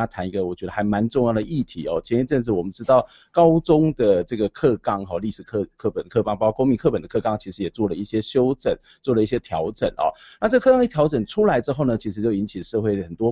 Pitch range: 100-125 Hz